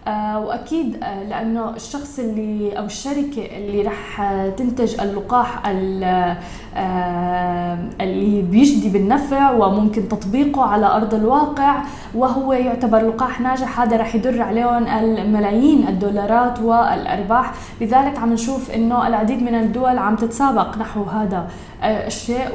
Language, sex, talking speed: Arabic, female, 110 wpm